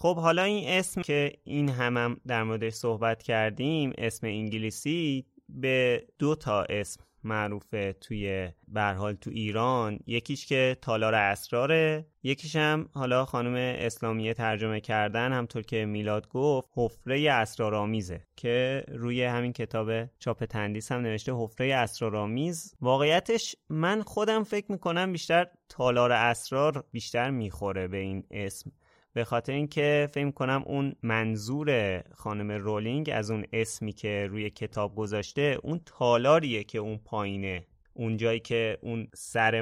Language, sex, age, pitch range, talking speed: Persian, male, 20-39, 110-145 Hz, 130 wpm